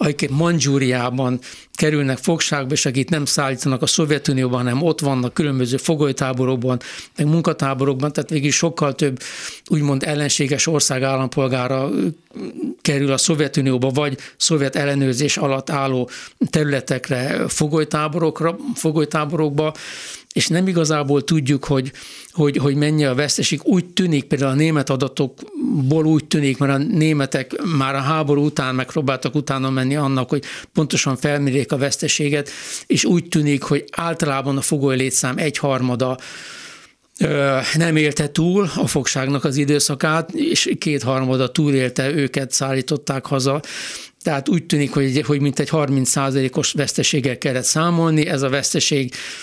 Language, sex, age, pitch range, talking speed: Hungarian, male, 60-79, 135-155 Hz, 130 wpm